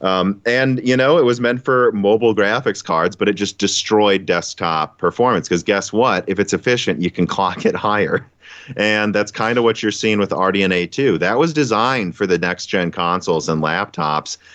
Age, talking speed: 30-49, 195 wpm